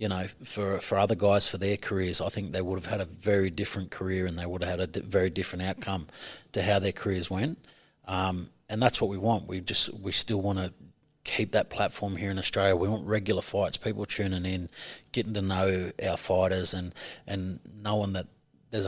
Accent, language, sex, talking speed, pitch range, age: Australian, English, male, 220 wpm, 95-105 Hz, 30-49